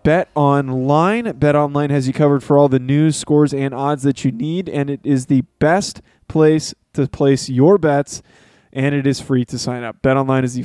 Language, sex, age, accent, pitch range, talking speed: English, male, 20-39, American, 135-165 Hz, 215 wpm